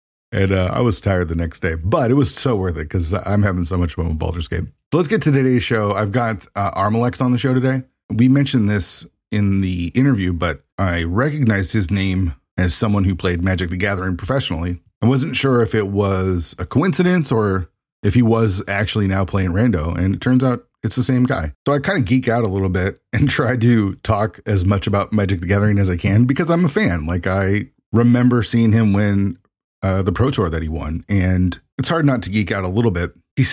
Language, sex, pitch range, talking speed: English, male, 90-120 Hz, 230 wpm